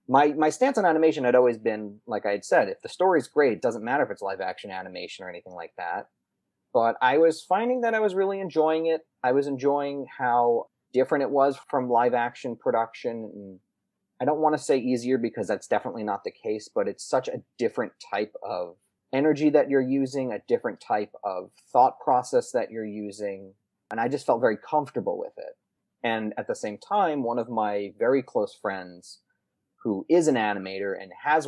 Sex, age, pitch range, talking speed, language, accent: male, 30-49, 105-150 Hz, 200 wpm, English, American